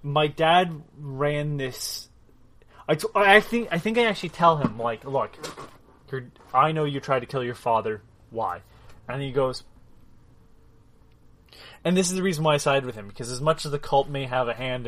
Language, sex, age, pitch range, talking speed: English, male, 20-39, 120-155 Hz, 200 wpm